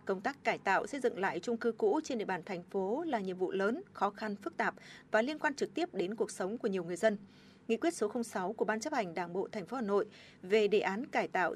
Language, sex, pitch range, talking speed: Vietnamese, female, 200-250 Hz, 280 wpm